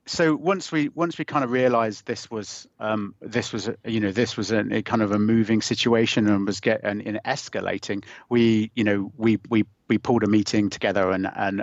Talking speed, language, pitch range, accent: 205 wpm, English, 105-120 Hz, British